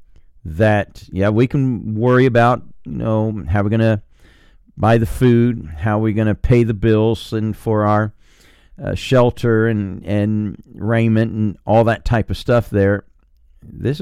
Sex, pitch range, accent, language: male, 80-115 Hz, American, English